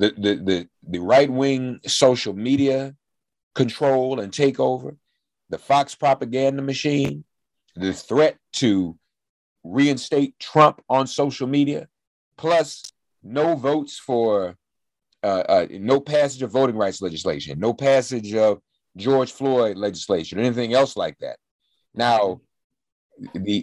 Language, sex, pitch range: English, male, 100-140 Hz